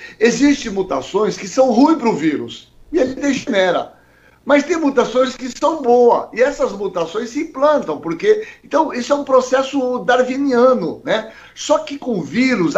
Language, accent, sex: Portuguese, Brazilian, male